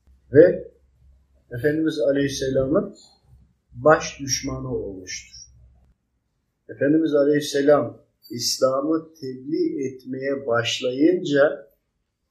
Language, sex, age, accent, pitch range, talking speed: Turkish, male, 50-69, native, 120-155 Hz, 60 wpm